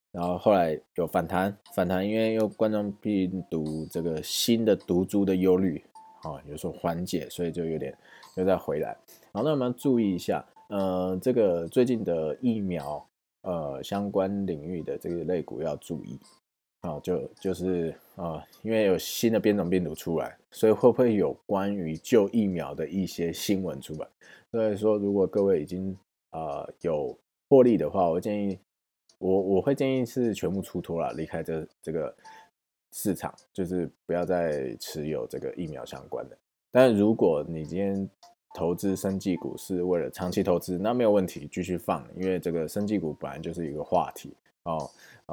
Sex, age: male, 20-39